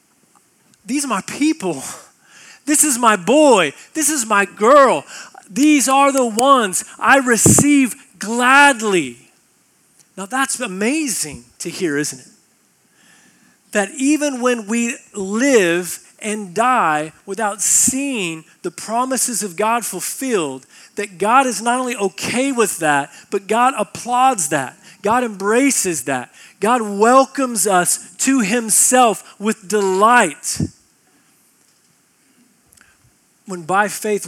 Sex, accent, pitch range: male, American, 170-240 Hz